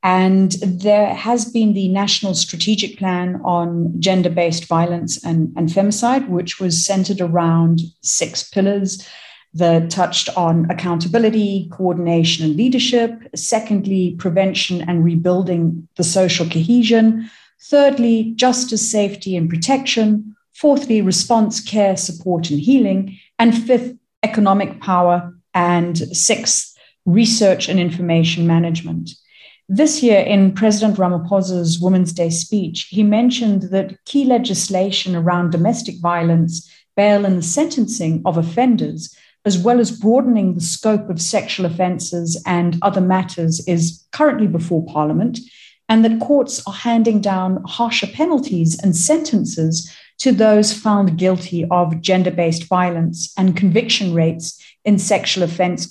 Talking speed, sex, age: 125 wpm, female, 40-59